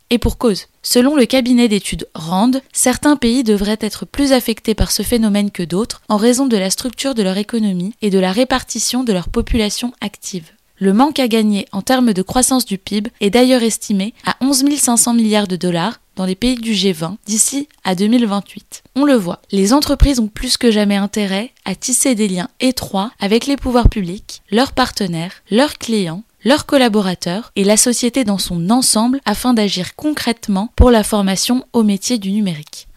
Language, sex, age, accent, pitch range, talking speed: French, female, 20-39, French, 200-250 Hz, 185 wpm